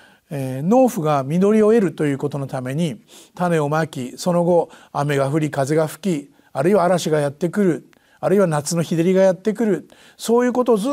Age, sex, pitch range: 50-69, male, 155-235 Hz